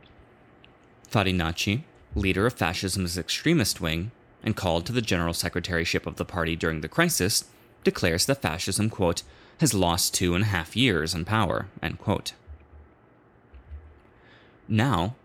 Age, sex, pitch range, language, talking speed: 30-49, male, 85-105 Hz, English, 135 wpm